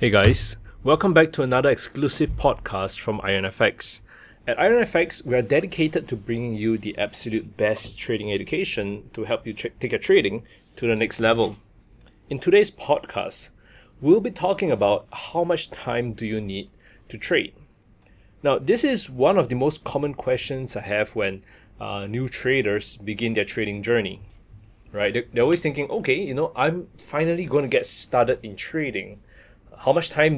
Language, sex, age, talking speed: English, male, 20-39, 170 wpm